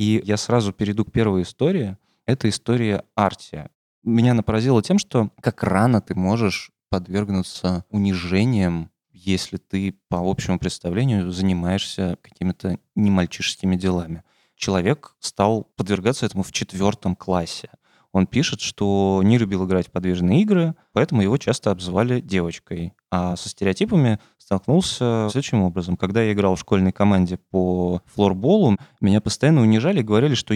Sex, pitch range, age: male, 95-110 Hz, 20-39